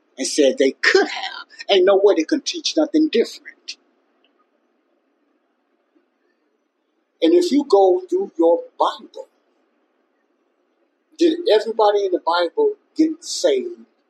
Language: English